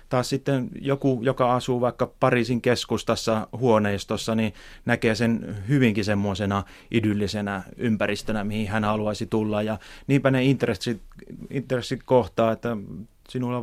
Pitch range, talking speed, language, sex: 105-125 Hz, 120 wpm, Finnish, male